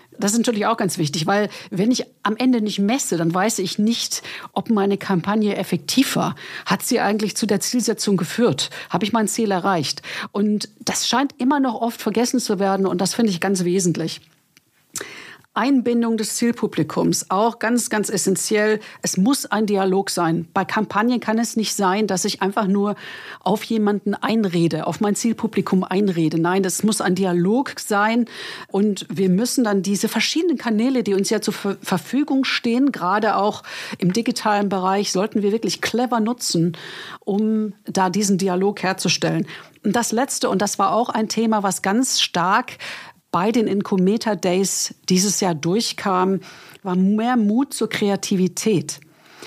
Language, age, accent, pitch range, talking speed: German, 50-69, German, 190-230 Hz, 165 wpm